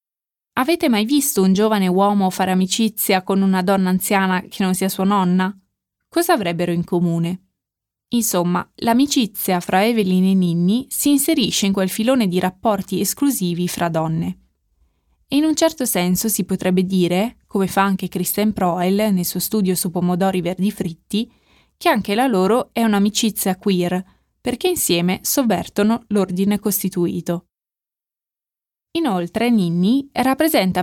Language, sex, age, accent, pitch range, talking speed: Italian, female, 20-39, native, 185-225 Hz, 140 wpm